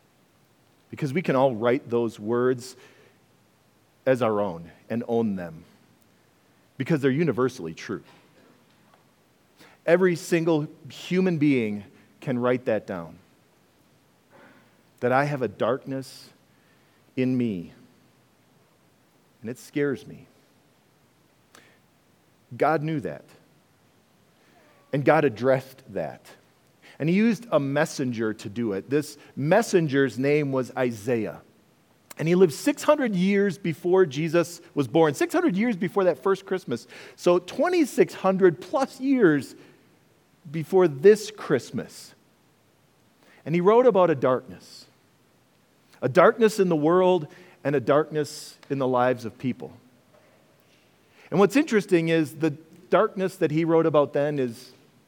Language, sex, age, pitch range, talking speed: English, male, 40-59, 130-180 Hz, 120 wpm